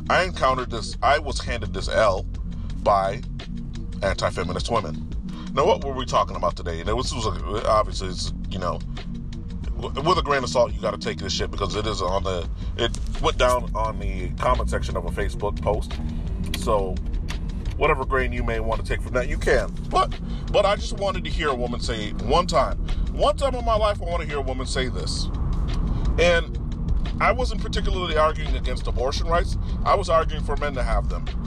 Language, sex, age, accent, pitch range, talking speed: English, male, 30-49, American, 80-130 Hz, 205 wpm